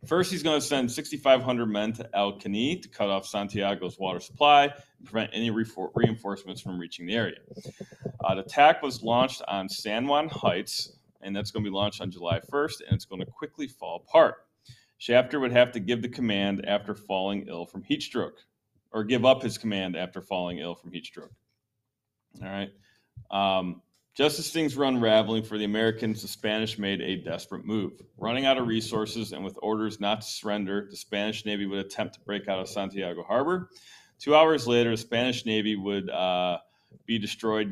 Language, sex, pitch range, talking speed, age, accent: English, male, 95-120 Hz, 195 wpm, 30-49, American